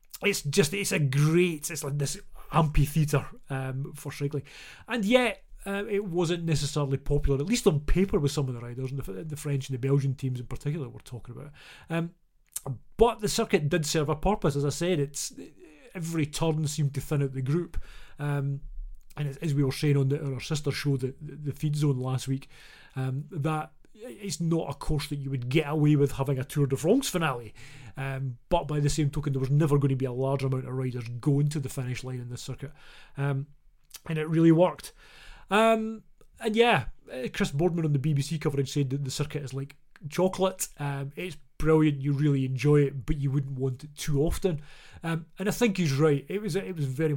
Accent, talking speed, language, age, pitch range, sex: British, 210 wpm, English, 30-49, 140-165 Hz, male